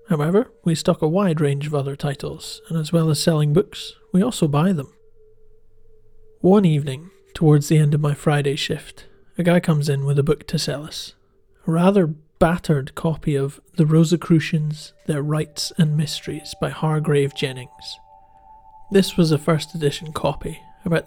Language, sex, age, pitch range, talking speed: English, male, 40-59, 150-185 Hz, 170 wpm